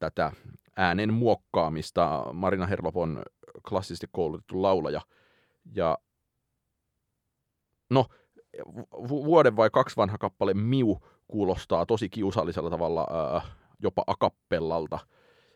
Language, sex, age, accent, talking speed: Finnish, male, 30-49, native, 85 wpm